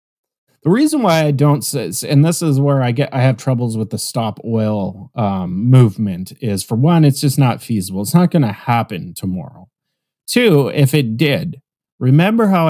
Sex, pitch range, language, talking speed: male, 115-160 Hz, English, 190 wpm